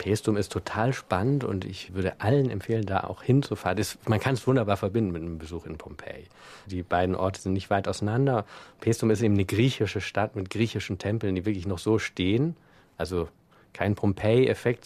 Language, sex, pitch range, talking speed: German, male, 95-115 Hz, 195 wpm